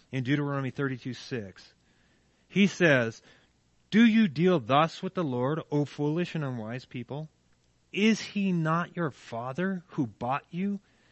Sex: male